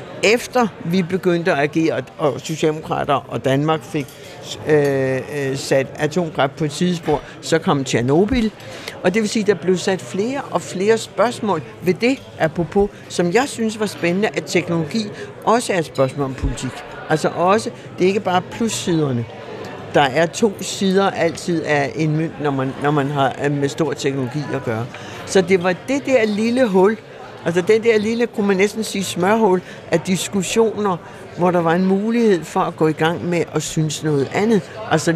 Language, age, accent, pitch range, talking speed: Danish, 60-79, native, 150-195 Hz, 185 wpm